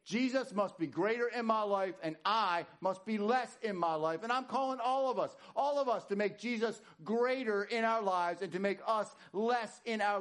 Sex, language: male, English